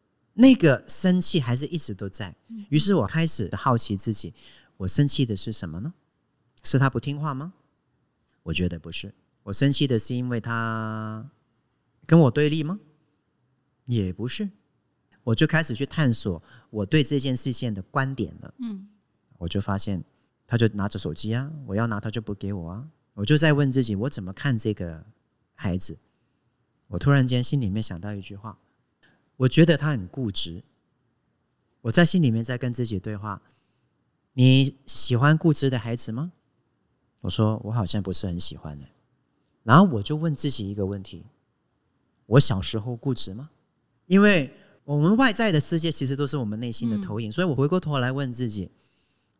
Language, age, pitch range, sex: Chinese, 40-59, 105-145 Hz, male